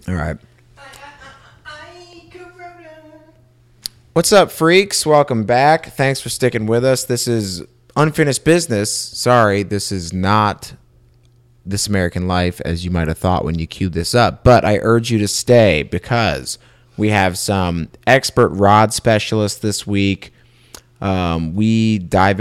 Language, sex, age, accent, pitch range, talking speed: English, male, 30-49, American, 90-120 Hz, 135 wpm